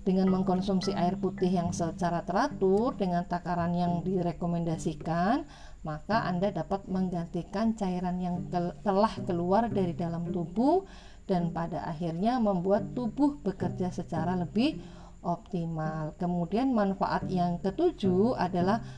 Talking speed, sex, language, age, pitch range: 115 wpm, female, Indonesian, 40-59, 175-225 Hz